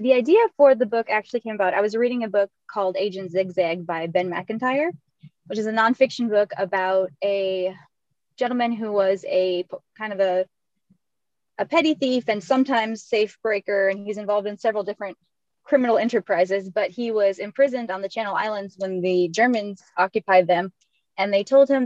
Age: 20-39